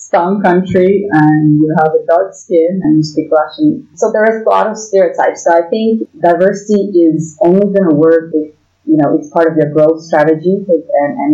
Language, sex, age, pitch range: English, female, 30-49, 155-195 Hz